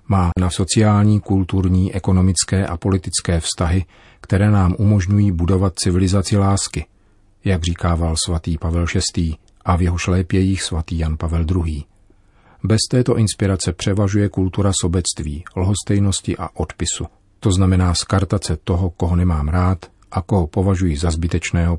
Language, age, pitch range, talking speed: Czech, 40-59, 90-100 Hz, 130 wpm